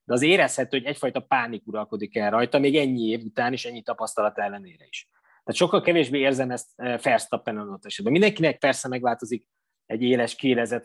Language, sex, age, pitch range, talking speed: Hungarian, male, 20-39, 120-155 Hz, 190 wpm